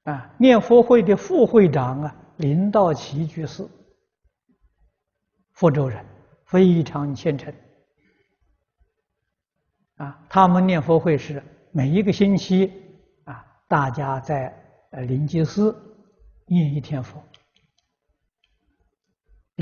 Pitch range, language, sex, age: 140-180 Hz, Chinese, male, 60-79